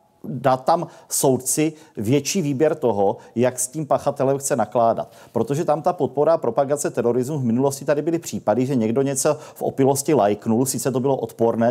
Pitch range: 125-150 Hz